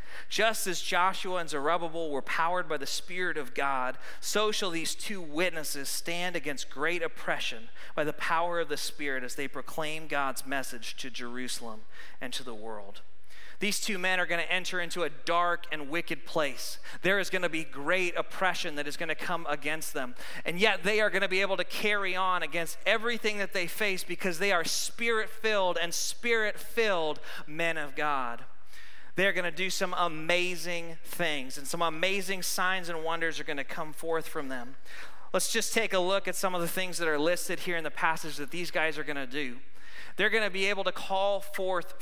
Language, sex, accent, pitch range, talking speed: English, male, American, 155-190 Hz, 195 wpm